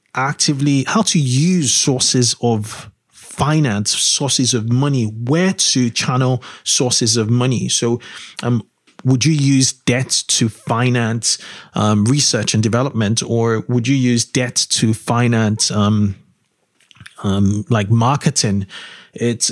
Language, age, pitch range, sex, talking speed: English, 30-49, 115-135 Hz, male, 125 wpm